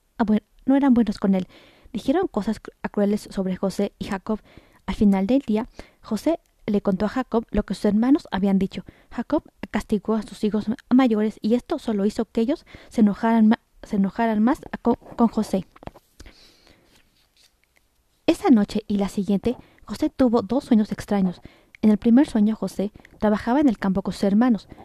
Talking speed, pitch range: 170 wpm, 200-235 Hz